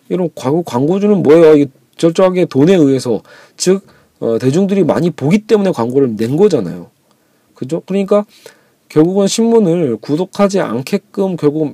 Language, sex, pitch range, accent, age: Korean, male, 135-180 Hz, native, 40-59